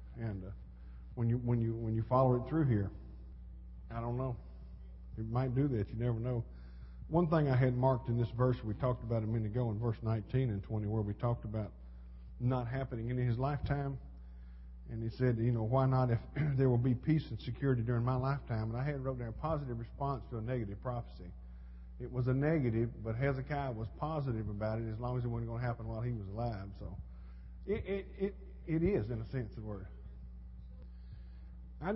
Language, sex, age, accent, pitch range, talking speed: English, male, 50-69, American, 95-130 Hz, 210 wpm